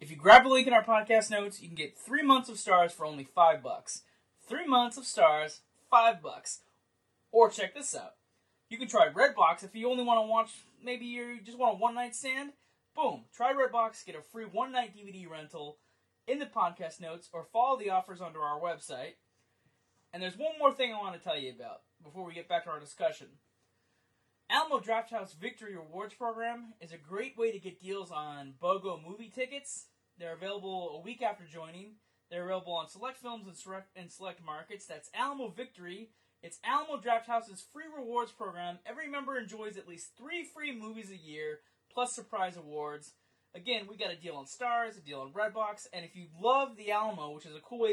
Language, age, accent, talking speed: English, 20-39, American, 205 wpm